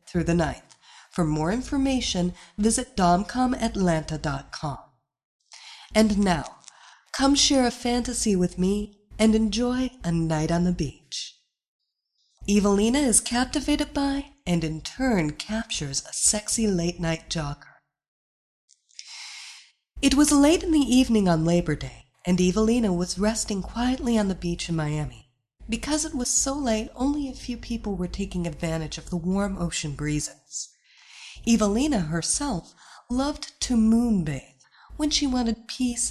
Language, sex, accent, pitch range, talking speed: English, female, American, 165-240 Hz, 135 wpm